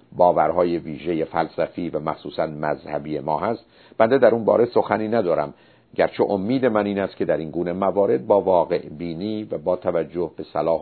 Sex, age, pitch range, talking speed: male, 50-69, 85-115 Hz, 175 wpm